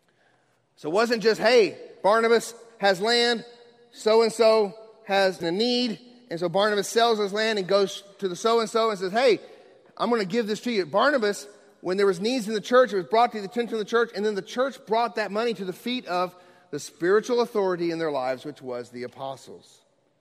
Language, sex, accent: English, male, American